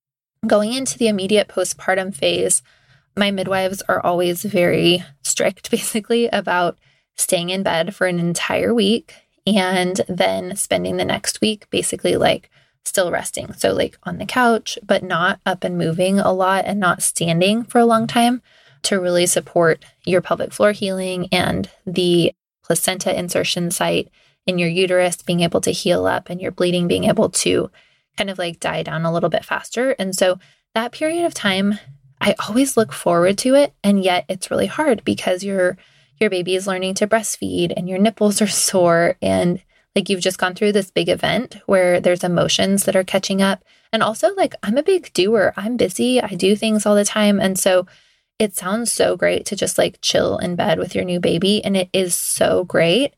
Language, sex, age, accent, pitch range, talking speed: English, female, 20-39, American, 175-210 Hz, 190 wpm